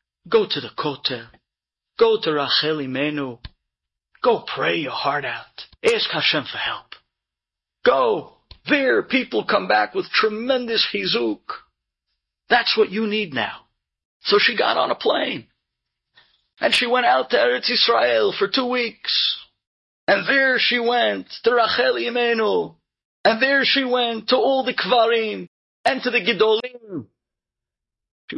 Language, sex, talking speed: English, male, 140 wpm